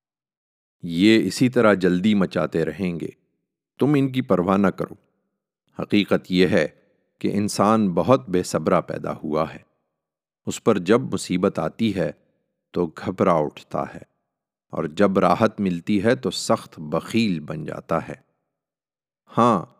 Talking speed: 140 wpm